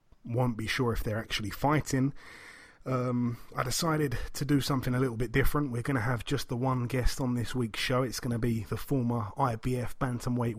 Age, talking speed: 30-49, 210 wpm